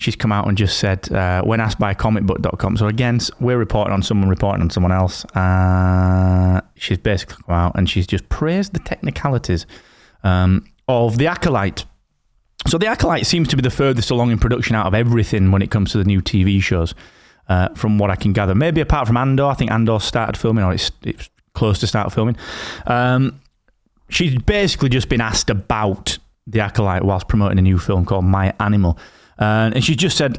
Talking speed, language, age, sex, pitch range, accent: 200 wpm, English, 30-49, male, 95-120 Hz, British